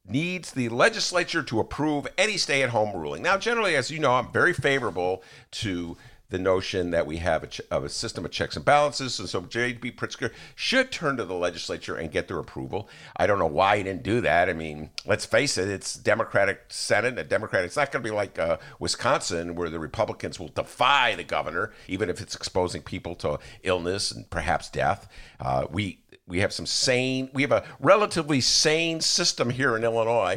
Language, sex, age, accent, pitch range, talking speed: English, male, 50-69, American, 110-160 Hz, 195 wpm